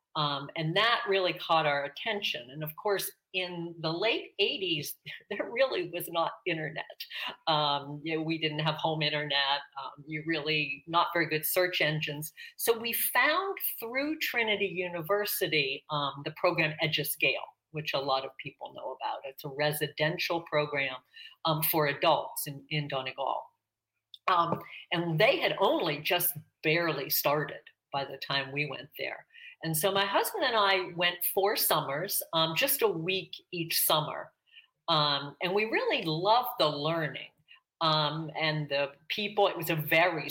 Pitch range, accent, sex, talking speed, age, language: 150-195 Hz, American, female, 155 wpm, 50-69, English